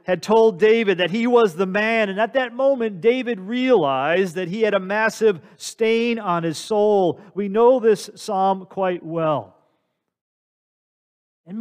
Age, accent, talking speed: 40-59, American, 155 wpm